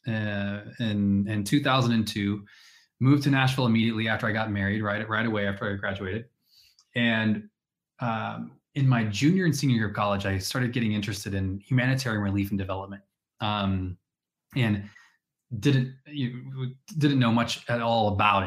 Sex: male